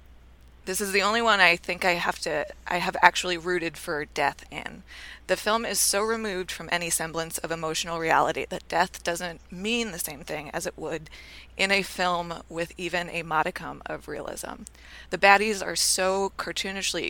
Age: 20-39